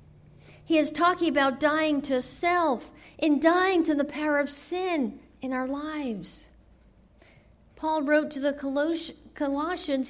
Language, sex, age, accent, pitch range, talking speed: English, female, 50-69, American, 275-340 Hz, 130 wpm